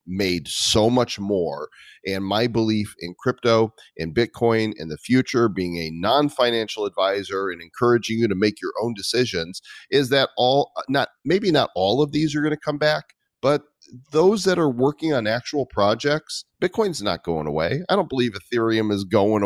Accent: American